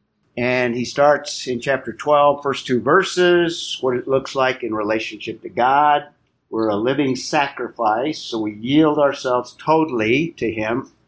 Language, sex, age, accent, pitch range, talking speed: English, male, 50-69, American, 120-150 Hz, 150 wpm